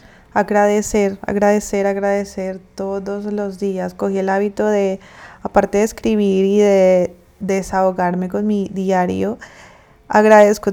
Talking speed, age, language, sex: 115 wpm, 20-39, Spanish, female